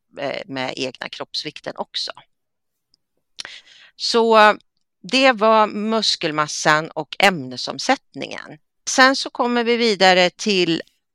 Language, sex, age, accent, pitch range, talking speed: Swedish, female, 40-59, native, 145-210 Hz, 85 wpm